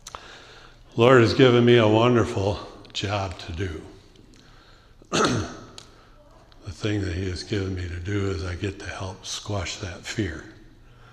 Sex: male